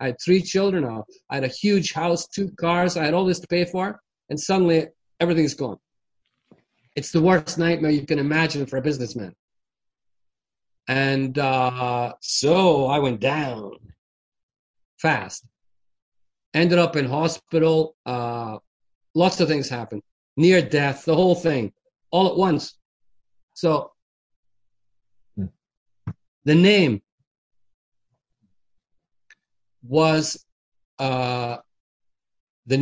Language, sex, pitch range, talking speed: English, male, 120-180 Hz, 115 wpm